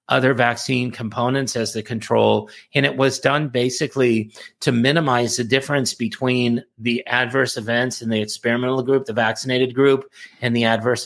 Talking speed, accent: 155 wpm, American